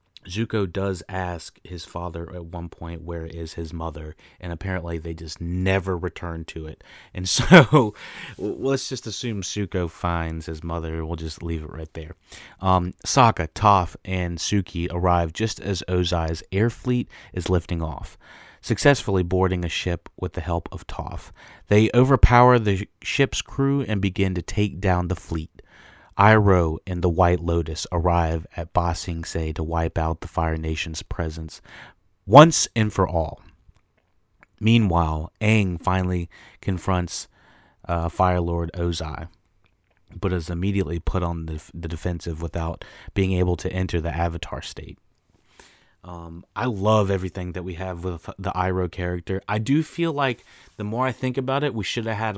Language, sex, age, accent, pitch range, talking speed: English, male, 30-49, American, 85-100 Hz, 160 wpm